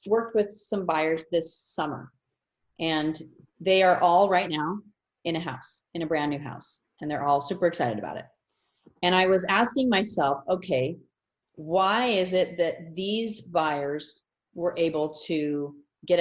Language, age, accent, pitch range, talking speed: English, 30-49, American, 165-200 Hz, 160 wpm